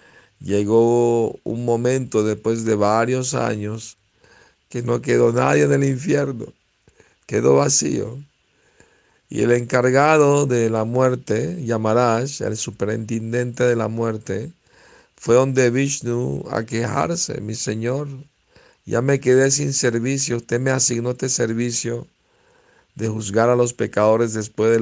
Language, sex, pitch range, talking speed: Spanish, male, 110-130 Hz, 125 wpm